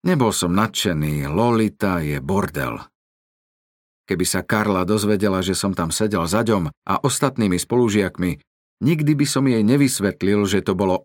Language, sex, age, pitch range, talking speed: Slovak, male, 50-69, 95-120 Hz, 145 wpm